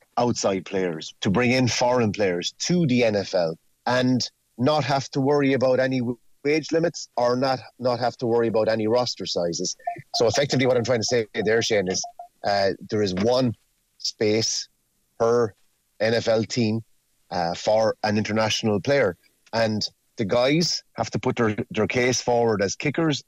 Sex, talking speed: male, 165 wpm